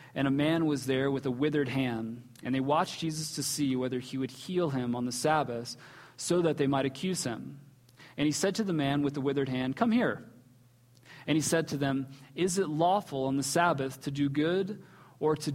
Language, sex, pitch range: English, male, 135-180 Hz